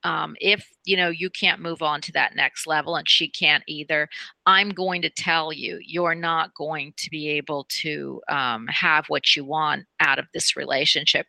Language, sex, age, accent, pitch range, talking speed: English, female, 40-59, American, 160-195 Hz, 195 wpm